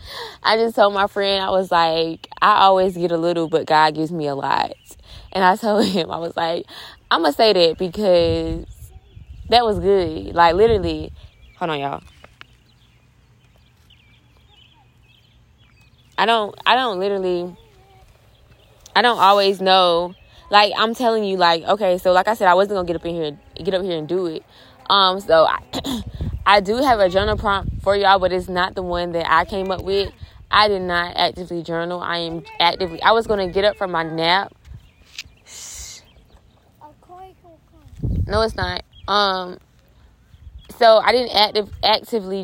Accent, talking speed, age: American, 170 wpm, 20-39